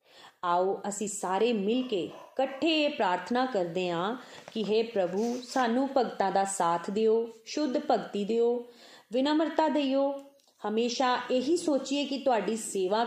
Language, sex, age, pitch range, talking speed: Punjabi, female, 30-49, 195-255 Hz, 135 wpm